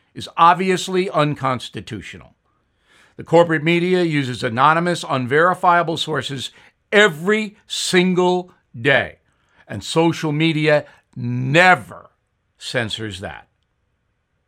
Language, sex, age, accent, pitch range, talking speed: English, male, 60-79, American, 115-160 Hz, 80 wpm